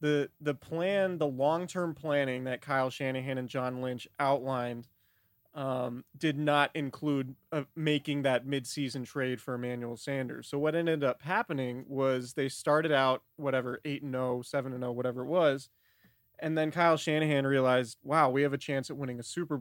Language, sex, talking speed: English, male, 170 wpm